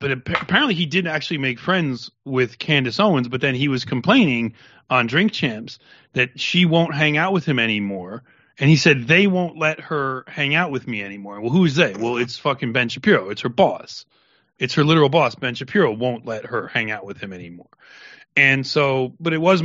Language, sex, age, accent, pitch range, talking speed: English, male, 30-49, American, 125-155 Hz, 210 wpm